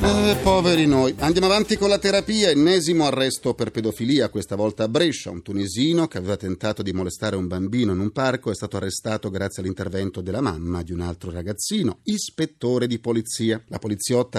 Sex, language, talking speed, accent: male, Italian, 185 wpm, native